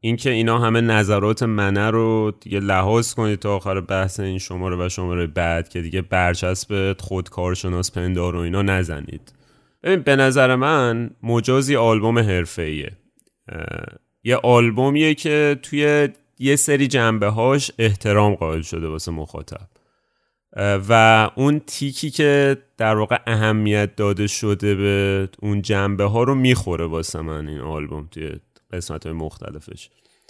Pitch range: 90-115 Hz